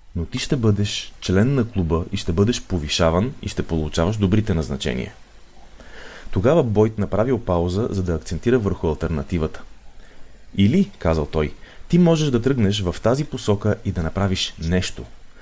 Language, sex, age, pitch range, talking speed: Bulgarian, male, 30-49, 85-115 Hz, 150 wpm